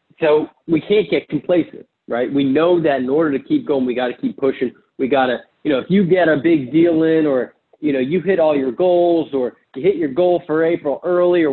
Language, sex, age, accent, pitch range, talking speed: English, male, 40-59, American, 130-175 Hz, 250 wpm